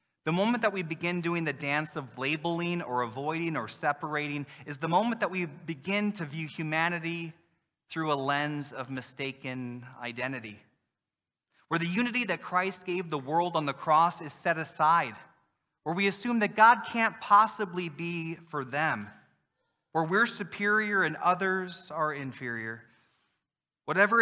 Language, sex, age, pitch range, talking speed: English, male, 30-49, 140-180 Hz, 150 wpm